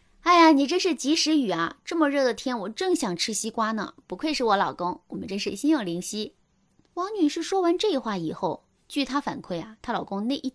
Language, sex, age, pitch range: Chinese, female, 20-39, 185-290 Hz